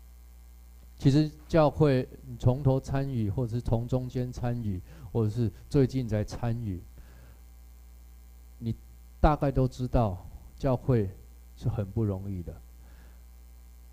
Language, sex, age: Chinese, male, 20-39